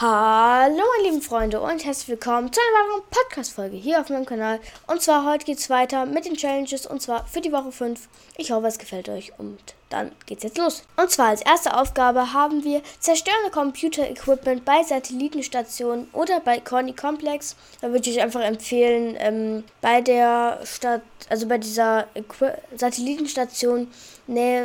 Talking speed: 175 wpm